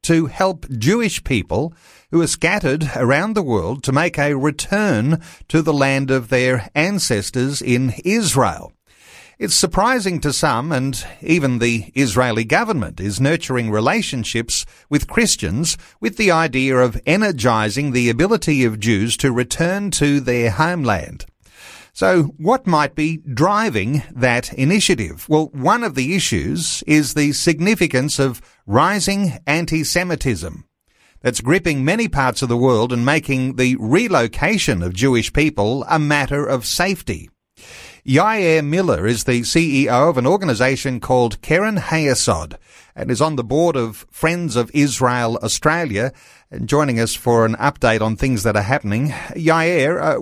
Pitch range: 125-165 Hz